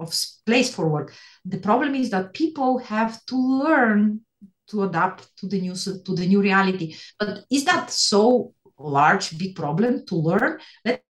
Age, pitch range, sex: 30-49, 175-230 Hz, female